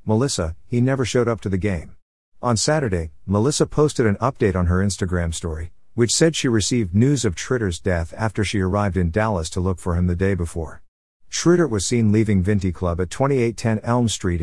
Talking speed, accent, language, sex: 200 wpm, American, English, male